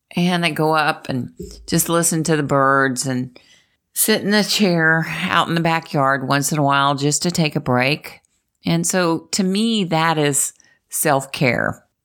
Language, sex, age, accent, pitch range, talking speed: English, female, 50-69, American, 130-175 Hz, 175 wpm